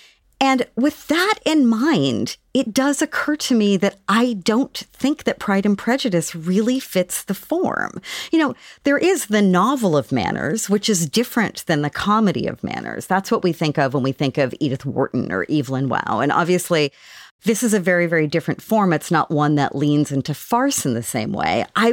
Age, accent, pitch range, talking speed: 40-59, American, 155-245 Hz, 200 wpm